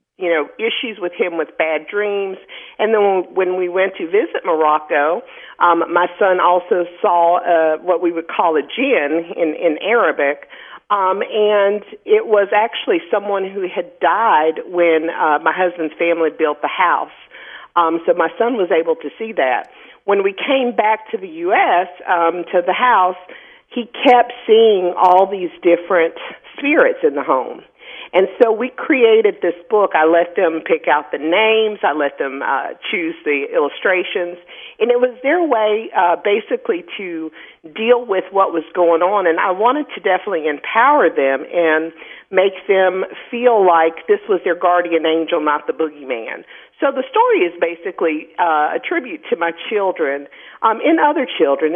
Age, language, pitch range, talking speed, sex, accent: 50-69, English, 170-260 Hz, 170 wpm, female, American